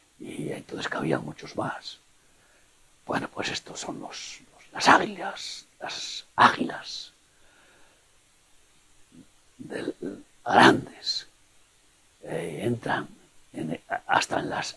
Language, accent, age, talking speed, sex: Spanish, Spanish, 60-79, 90 wpm, male